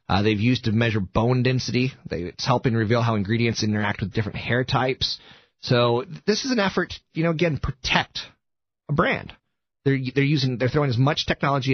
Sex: male